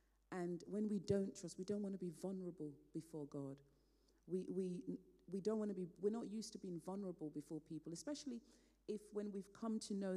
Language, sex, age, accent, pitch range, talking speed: English, female, 40-59, British, 160-210 Hz, 200 wpm